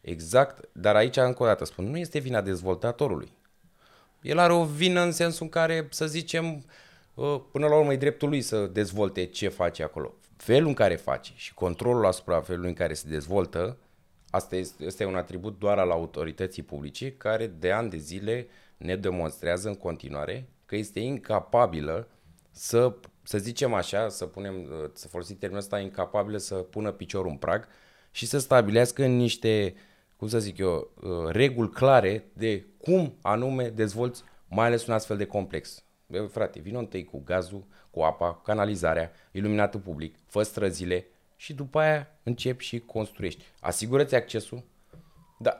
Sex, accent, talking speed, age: male, native, 160 wpm, 20-39